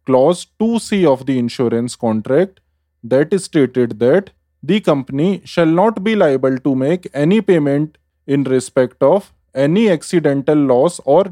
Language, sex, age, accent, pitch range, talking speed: English, male, 20-39, Indian, 120-175 Hz, 145 wpm